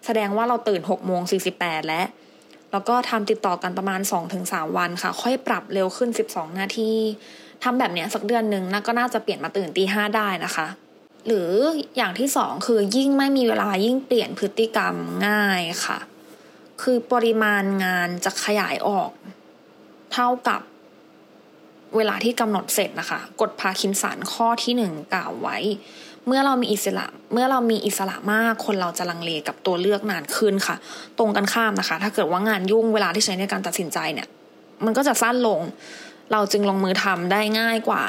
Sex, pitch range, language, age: female, 195-240 Hz, English, 20-39